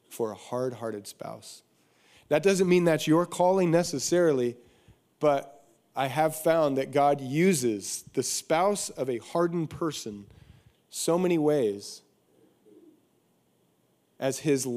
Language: English